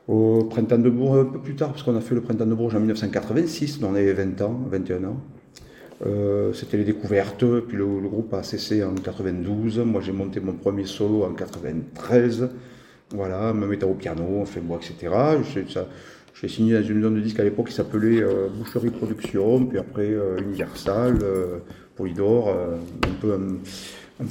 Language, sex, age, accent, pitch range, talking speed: French, male, 40-59, French, 95-115 Hz, 195 wpm